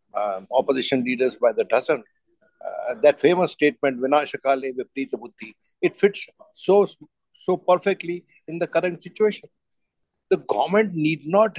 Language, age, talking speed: English, 60-79, 130 wpm